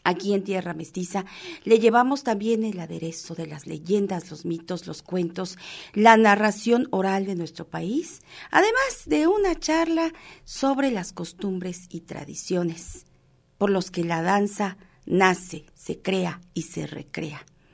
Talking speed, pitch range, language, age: 140 wpm, 180-250 Hz, Spanish, 40-59